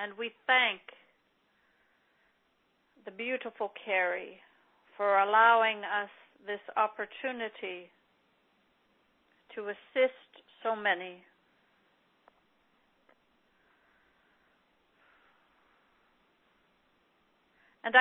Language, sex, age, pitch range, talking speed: English, female, 60-79, 210-255 Hz, 55 wpm